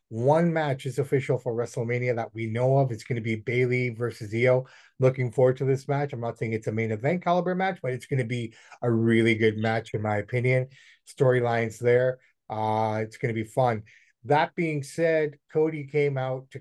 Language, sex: English, male